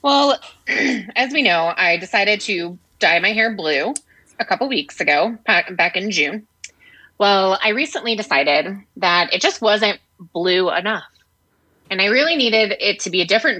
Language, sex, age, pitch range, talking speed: English, female, 20-39, 185-250 Hz, 165 wpm